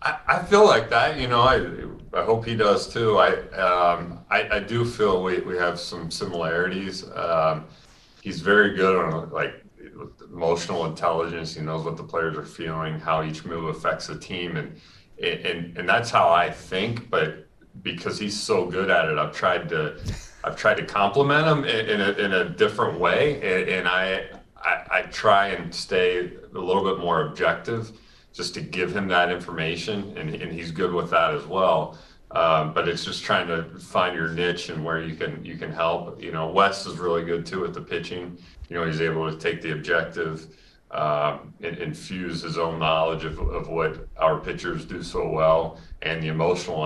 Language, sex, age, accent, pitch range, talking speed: English, male, 40-59, American, 80-95 Hz, 190 wpm